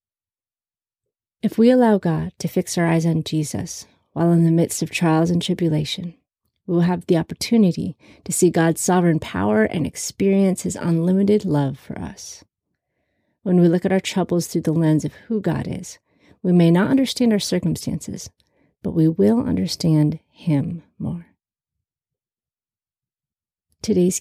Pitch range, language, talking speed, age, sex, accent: 160-190 Hz, English, 150 wpm, 30-49, female, American